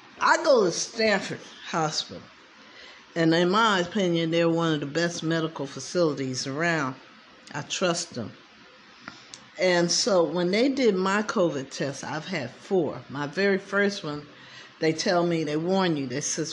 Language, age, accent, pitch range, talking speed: English, 50-69, American, 150-195 Hz, 155 wpm